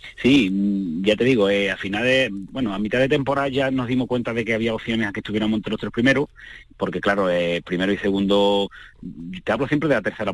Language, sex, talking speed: Spanish, male, 225 wpm